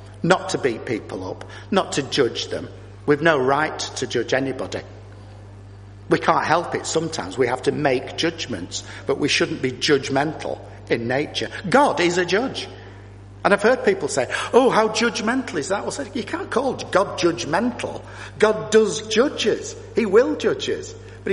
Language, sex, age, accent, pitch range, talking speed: English, male, 50-69, British, 100-155 Hz, 165 wpm